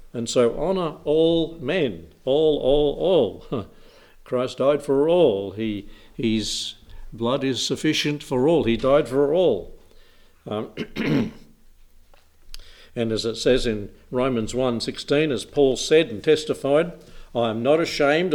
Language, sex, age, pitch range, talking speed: English, male, 60-79, 110-150 Hz, 130 wpm